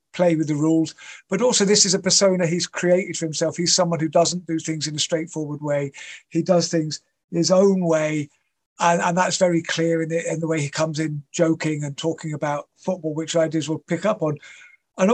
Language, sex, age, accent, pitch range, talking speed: English, male, 50-69, British, 160-185 Hz, 220 wpm